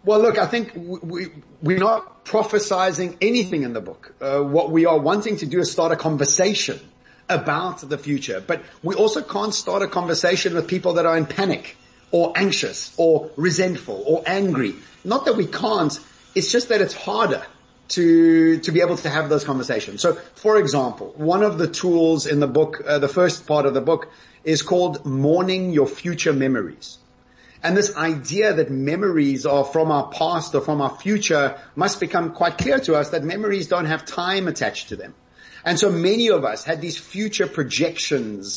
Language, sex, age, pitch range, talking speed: English, male, 30-49, 150-185 Hz, 185 wpm